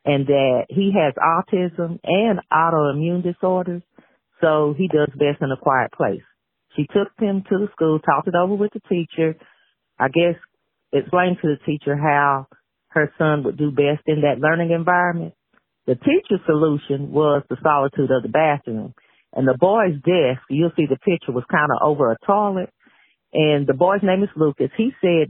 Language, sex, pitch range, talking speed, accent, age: English, female, 145-185 Hz, 180 wpm, American, 40-59